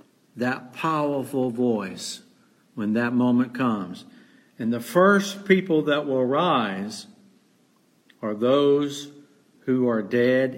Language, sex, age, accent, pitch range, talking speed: English, male, 50-69, American, 150-230 Hz, 110 wpm